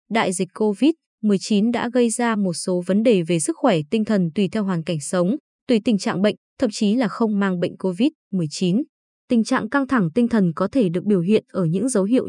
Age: 20-39